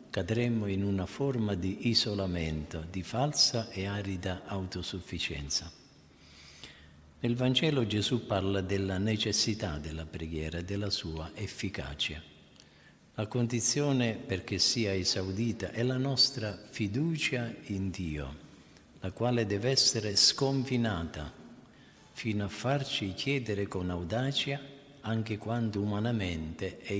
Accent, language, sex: native, Italian, male